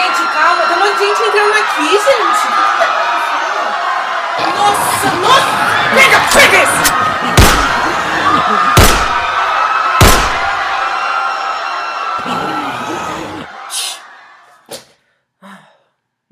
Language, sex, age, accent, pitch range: Portuguese, female, 20-39, Brazilian, 165-200 Hz